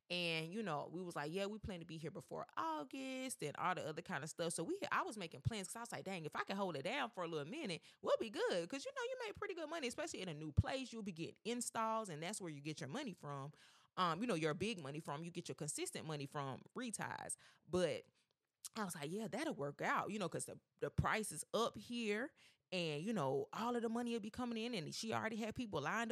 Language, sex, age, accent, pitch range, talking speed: English, female, 20-39, American, 155-225 Hz, 270 wpm